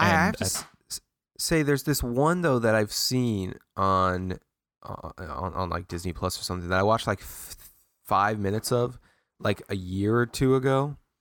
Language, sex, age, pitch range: English, male, 20-39, 95-130 Hz